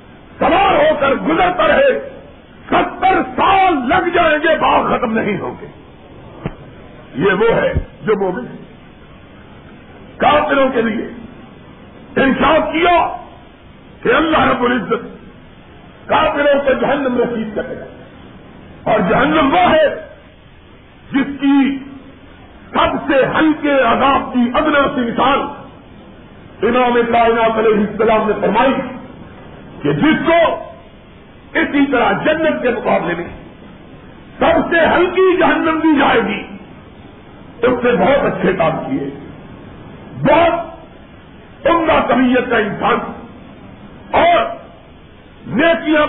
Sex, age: male, 50-69